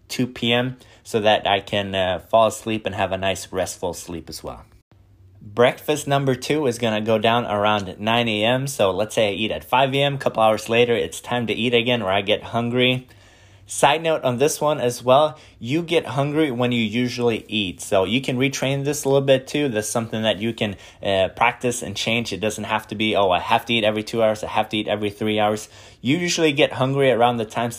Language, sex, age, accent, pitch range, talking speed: English, male, 20-39, American, 105-125 Hz, 235 wpm